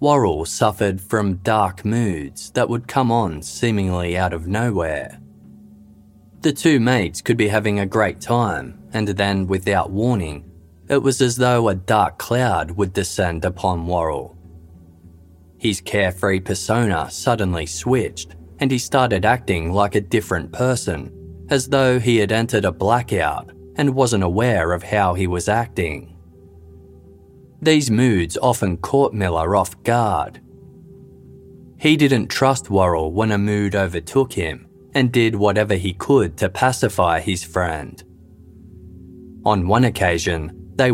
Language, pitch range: English, 90-120 Hz